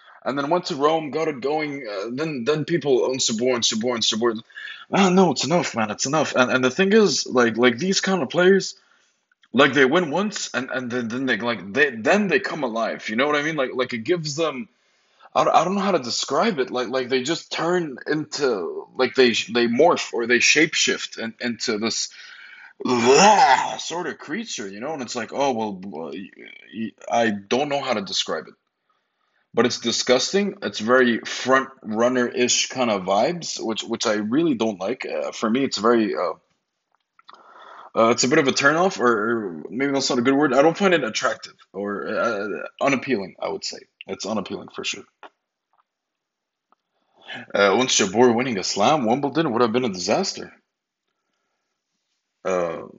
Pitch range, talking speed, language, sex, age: 120-160 Hz, 190 wpm, English, male, 20-39